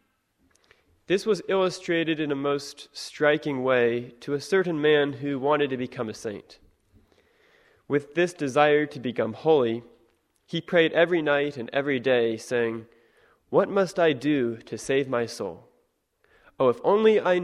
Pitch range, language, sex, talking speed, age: 125-165 Hz, English, male, 150 wpm, 20-39